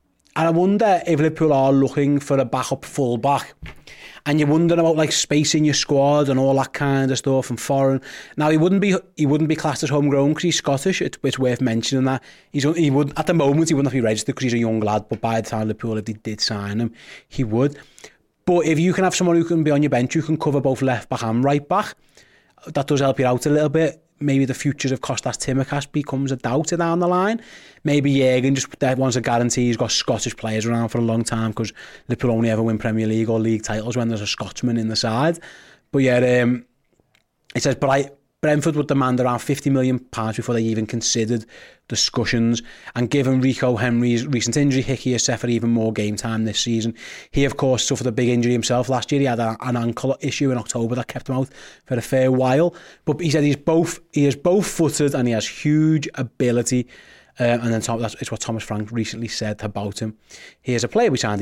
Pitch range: 115-145 Hz